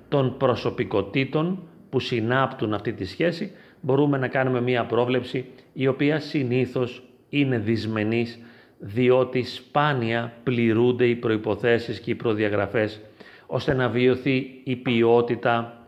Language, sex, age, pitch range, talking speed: Greek, male, 40-59, 110-135 Hz, 115 wpm